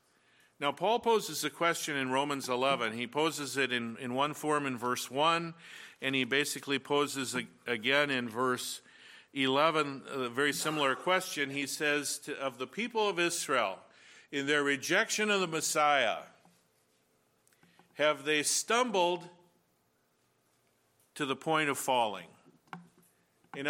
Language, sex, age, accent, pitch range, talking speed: English, male, 50-69, American, 130-160 Hz, 130 wpm